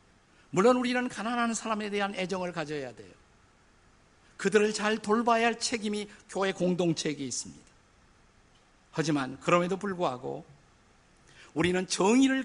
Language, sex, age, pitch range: Korean, male, 50-69, 150-215 Hz